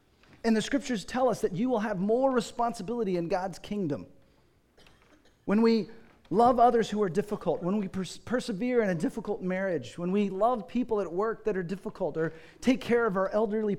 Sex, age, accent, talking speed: male, 40-59, American, 185 wpm